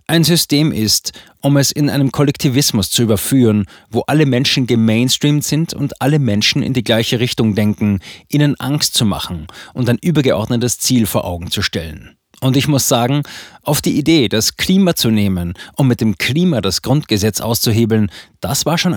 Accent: German